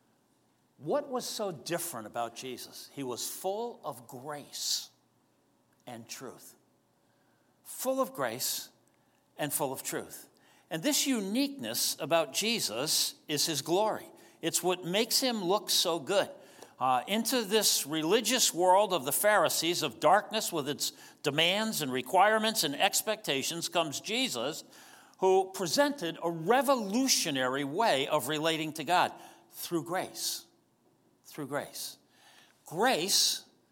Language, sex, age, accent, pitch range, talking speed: English, male, 60-79, American, 145-225 Hz, 120 wpm